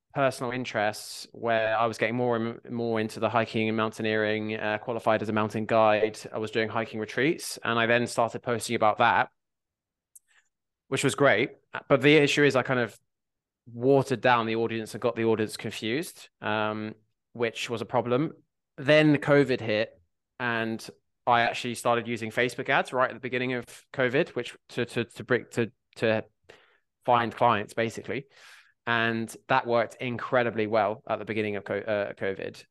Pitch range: 105-120 Hz